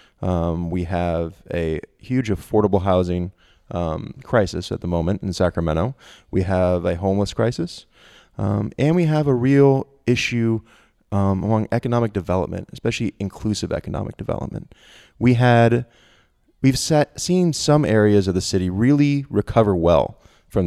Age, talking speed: 20-39, 140 wpm